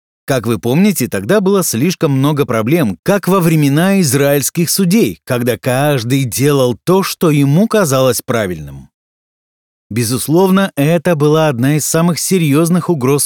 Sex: male